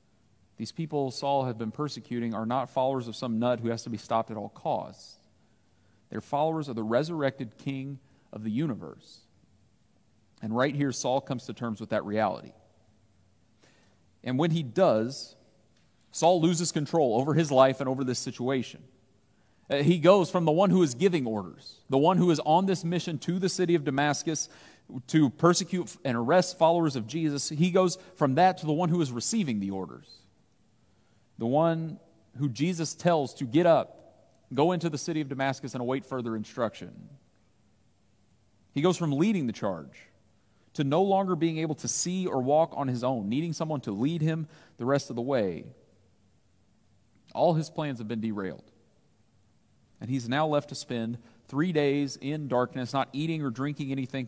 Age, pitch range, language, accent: 40-59, 115-160 Hz, English, American